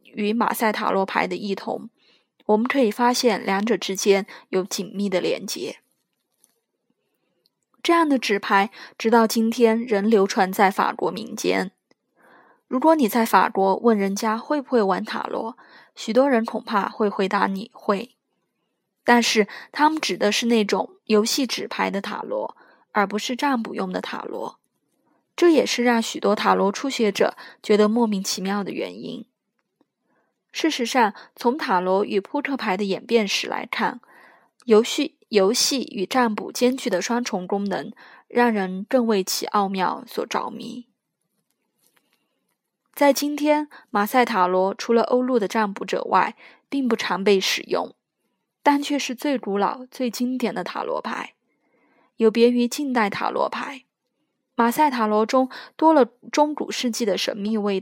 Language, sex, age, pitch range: Chinese, female, 20-39, 205-260 Hz